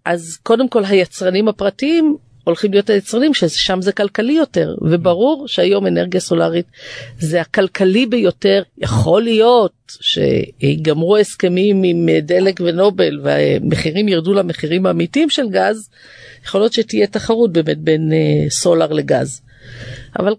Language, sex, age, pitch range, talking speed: Hebrew, female, 50-69, 160-230 Hz, 120 wpm